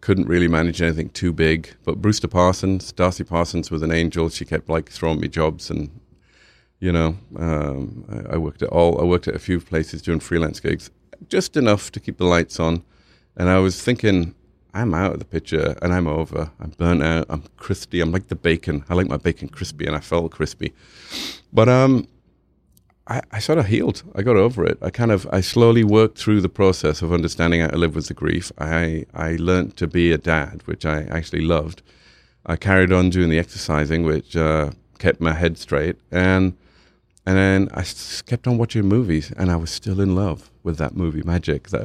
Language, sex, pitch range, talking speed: English, male, 80-95 Hz, 210 wpm